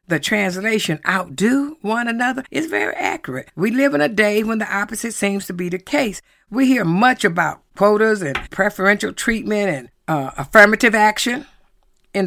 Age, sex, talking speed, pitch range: 50-69, female, 165 wpm, 185-255 Hz